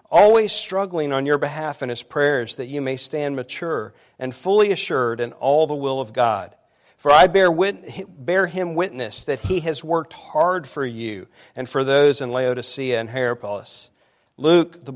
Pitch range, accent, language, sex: 120-145 Hz, American, English, male